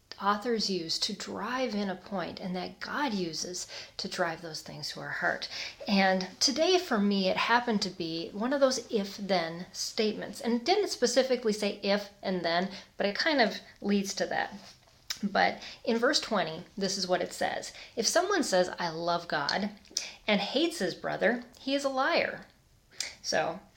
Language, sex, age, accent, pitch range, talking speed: English, female, 30-49, American, 185-260 Hz, 175 wpm